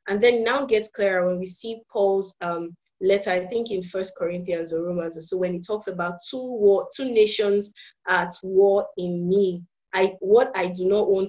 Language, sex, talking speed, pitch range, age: English, female, 195 wpm, 180-210 Hz, 20-39